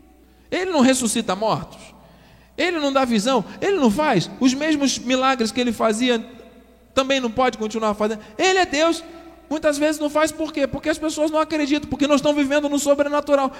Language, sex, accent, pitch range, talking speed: Portuguese, male, Brazilian, 210-290 Hz, 185 wpm